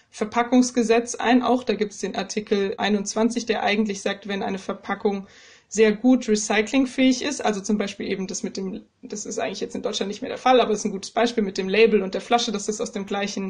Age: 20-39